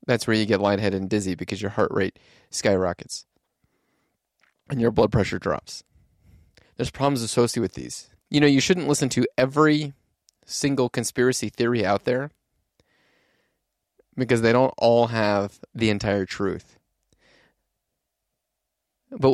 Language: English